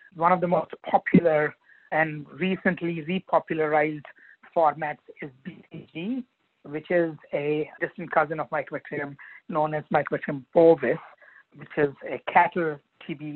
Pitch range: 150-175 Hz